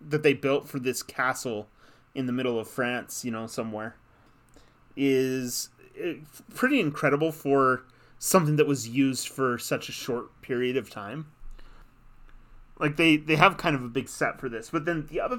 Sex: male